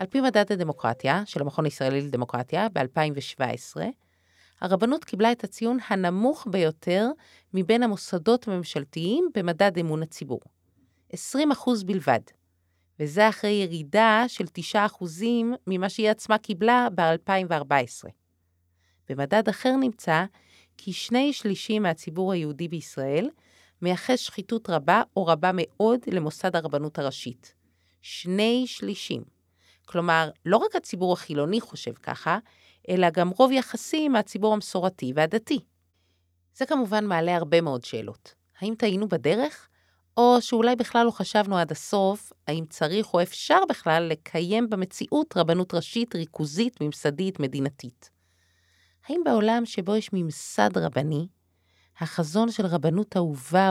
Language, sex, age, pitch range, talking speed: Hebrew, female, 30-49, 145-220 Hz, 115 wpm